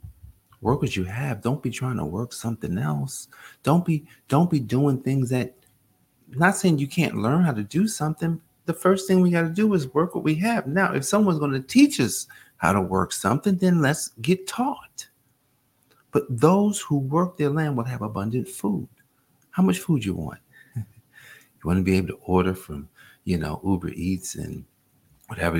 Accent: American